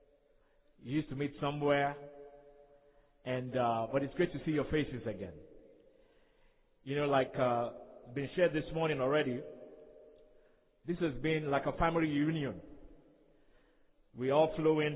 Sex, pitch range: male, 130-150 Hz